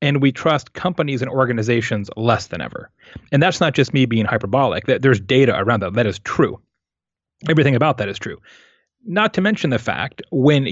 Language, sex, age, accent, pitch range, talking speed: English, male, 30-49, American, 115-145 Hz, 190 wpm